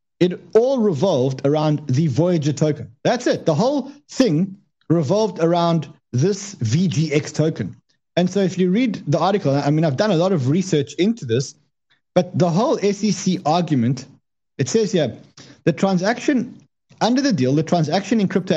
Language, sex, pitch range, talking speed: English, male, 140-195 Hz, 165 wpm